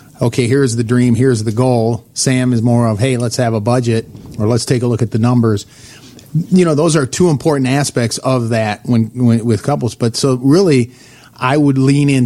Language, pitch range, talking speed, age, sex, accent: English, 120-135 Hz, 215 wpm, 40-59, male, American